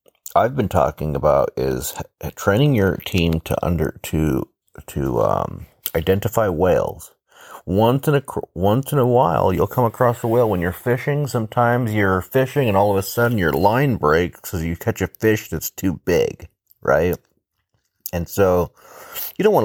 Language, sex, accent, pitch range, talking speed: English, male, American, 85-115 Hz, 170 wpm